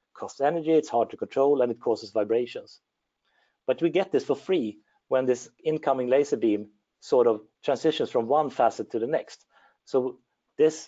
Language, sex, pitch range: English, male, 115-180 Hz